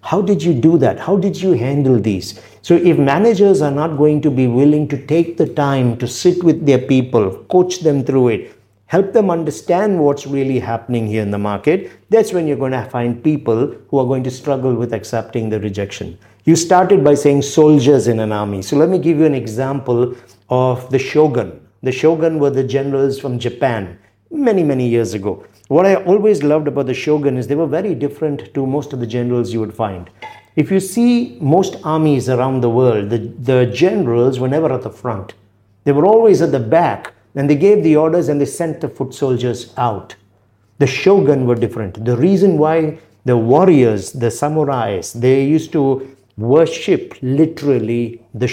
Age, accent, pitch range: 50-69, Indian, 120-155 Hz